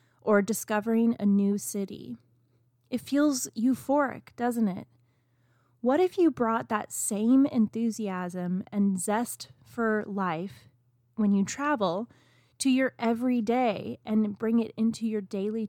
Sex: female